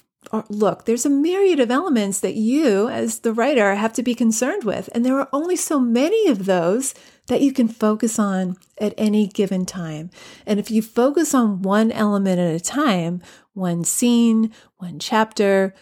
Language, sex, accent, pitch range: English, female, American, 195-245 Hz